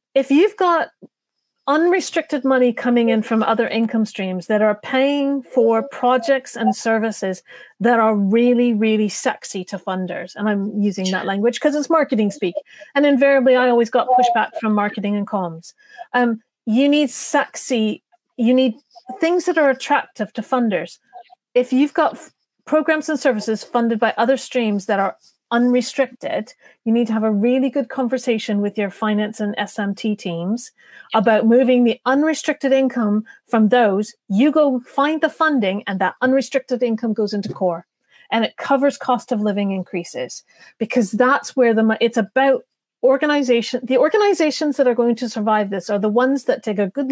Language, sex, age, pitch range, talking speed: English, female, 30-49, 215-270 Hz, 170 wpm